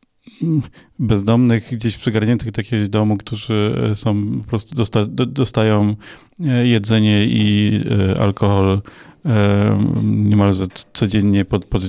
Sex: male